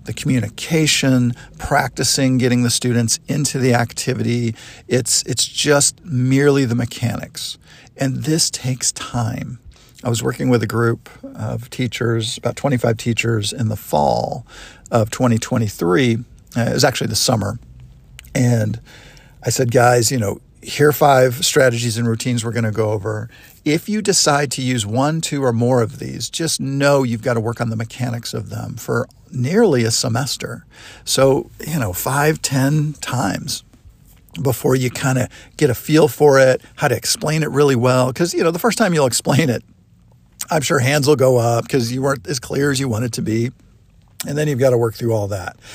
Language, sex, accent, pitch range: English, male, American, 115-135 Hz